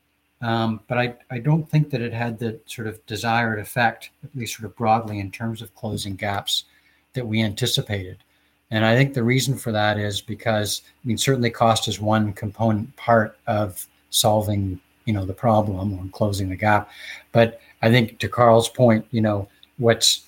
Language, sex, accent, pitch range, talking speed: English, male, American, 100-115 Hz, 185 wpm